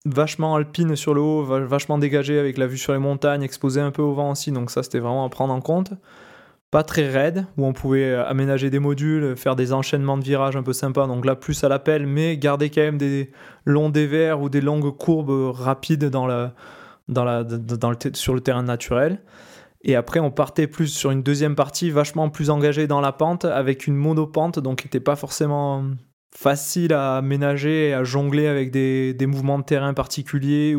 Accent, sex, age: French, male, 20-39